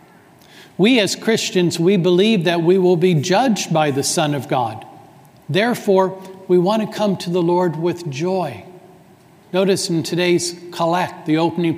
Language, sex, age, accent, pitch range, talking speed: English, male, 60-79, American, 150-180 Hz, 160 wpm